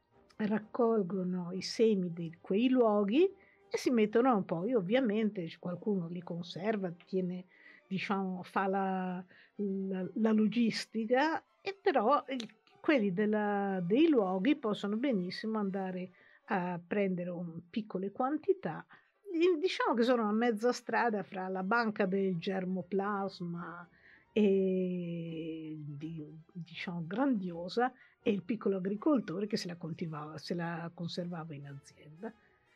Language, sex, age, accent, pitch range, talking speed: Italian, female, 50-69, native, 180-245 Hz, 115 wpm